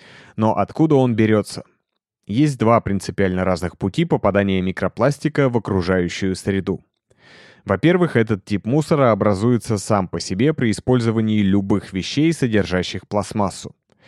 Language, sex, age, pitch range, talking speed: Russian, male, 30-49, 95-125 Hz, 120 wpm